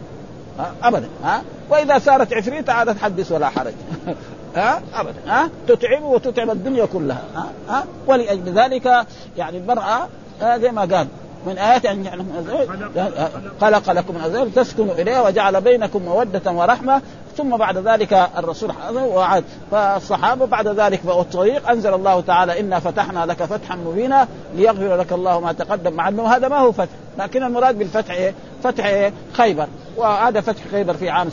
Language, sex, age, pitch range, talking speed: Arabic, male, 50-69, 180-235 Hz, 140 wpm